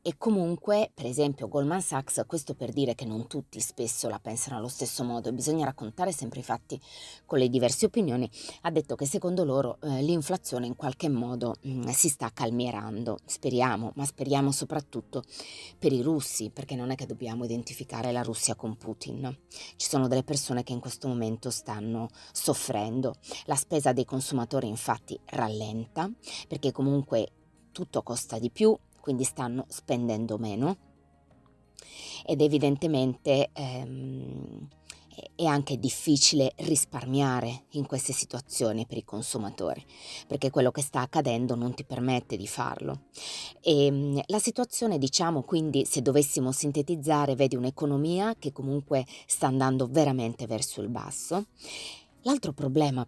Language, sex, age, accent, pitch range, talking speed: Italian, female, 30-49, native, 120-145 Hz, 145 wpm